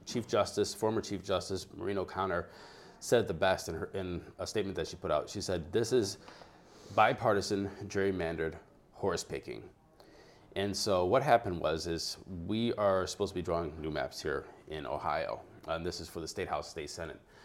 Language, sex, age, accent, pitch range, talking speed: English, male, 30-49, American, 90-110 Hz, 180 wpm